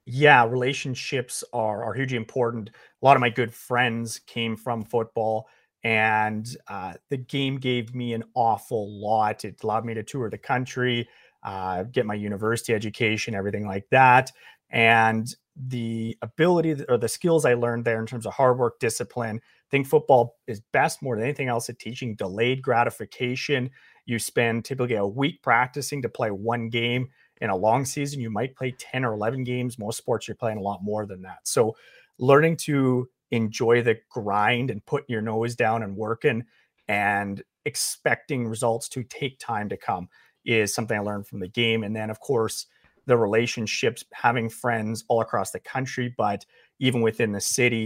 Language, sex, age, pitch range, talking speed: English, male, 30-49, 110-125 Hz, 180 wpm